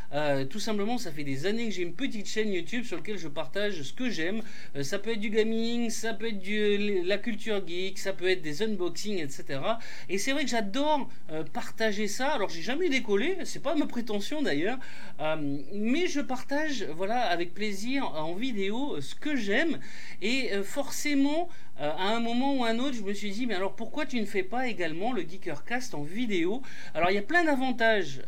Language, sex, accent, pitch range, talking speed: French, male, French, 185-265 Hz, 215 wpm